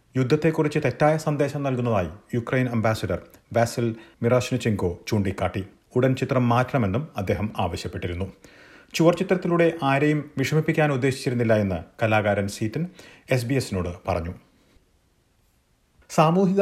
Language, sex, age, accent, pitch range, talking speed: Malayalam, male, 40-59, native, 105-145 Hz, 85 wpm